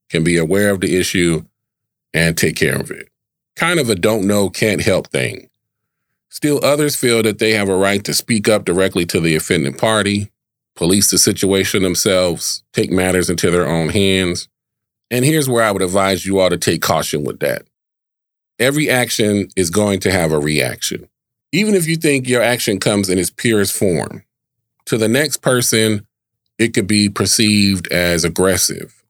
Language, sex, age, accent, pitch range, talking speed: English, male, 40-59, American, 95-115 Hz, 180 wpm